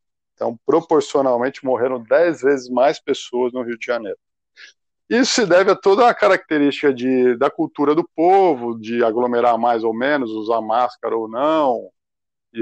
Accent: Brazilian